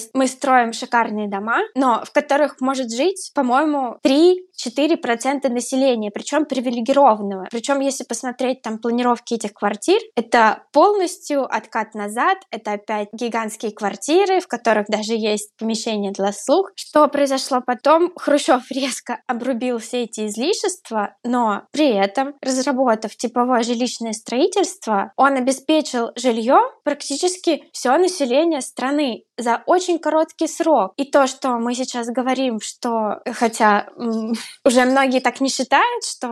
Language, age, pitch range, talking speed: Russian, 20-39, 230-280 Hz, 125 wpm